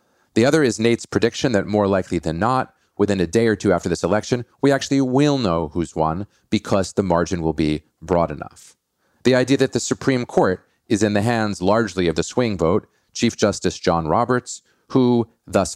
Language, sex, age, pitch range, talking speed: English, male, 40-59, 85-110 Hz, 200 wpm